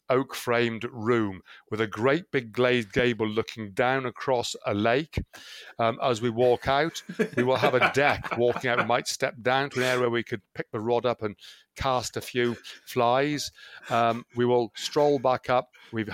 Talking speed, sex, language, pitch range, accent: 190 wpm, male, English, 110-130 Hz, British